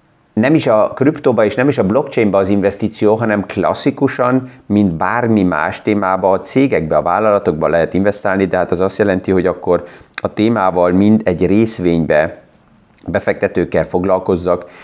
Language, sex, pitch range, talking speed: Hungarian, male, 95-110 Hz, 145 wpm